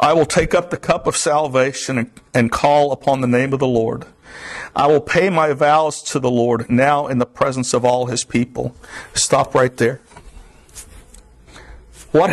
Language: English